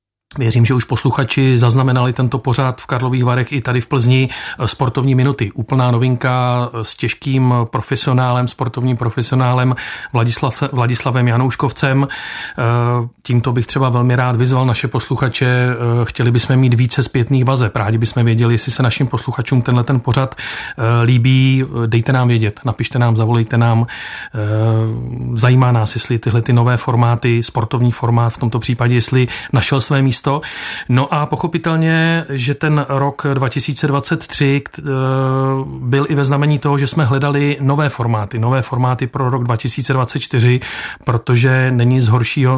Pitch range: 120-135 Hz